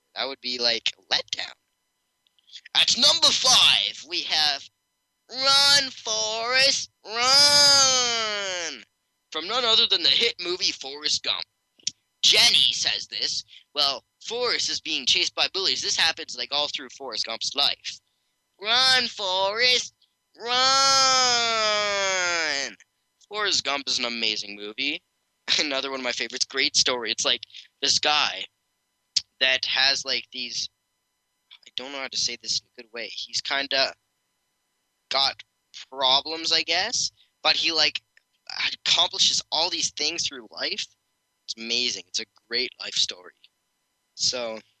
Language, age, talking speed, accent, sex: English, 10-29, 135 wpm, American, male